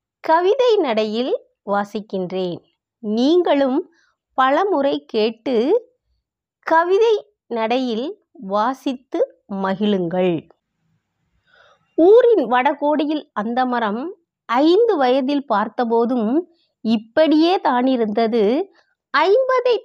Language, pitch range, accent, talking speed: Tamil, 225-325 Hz, native, 60 wpm